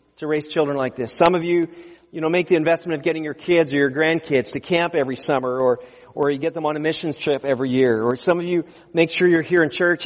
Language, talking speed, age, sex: English, 270 wpm, 40-59, male